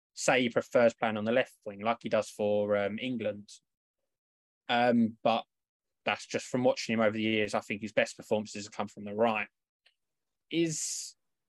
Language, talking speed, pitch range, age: English, 185 wpm, 115-145 Hz, 20-39